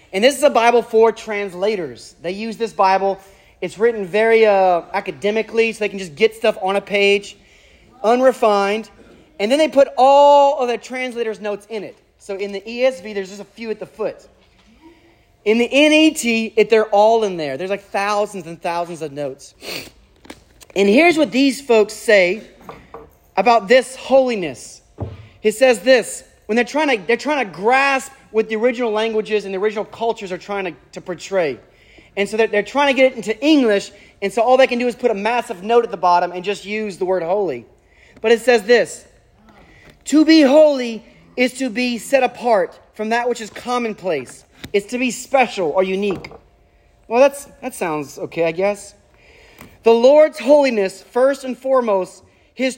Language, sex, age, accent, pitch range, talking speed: English, male, 30-49, American, 200-255 Hz, 185 wpm